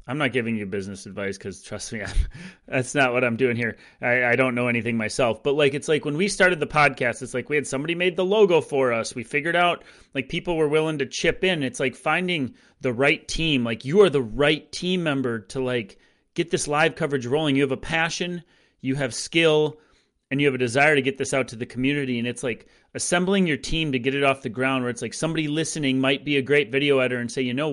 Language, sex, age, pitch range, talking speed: English, male, 30-49, 125-155 Hz, 250 wpm